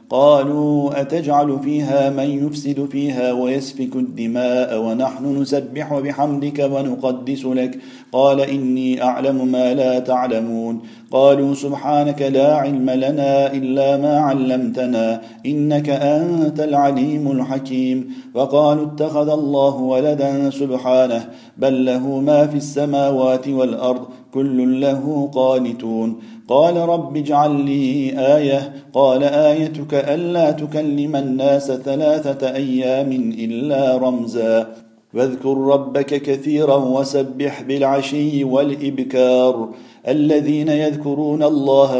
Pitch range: 130-145 Hz